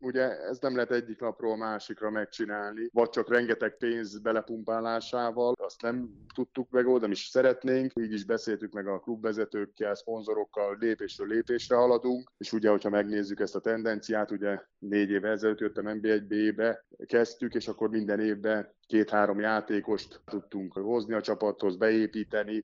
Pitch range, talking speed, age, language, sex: 105-115 Hz, 145 wpm, 20-39, Hungarian, male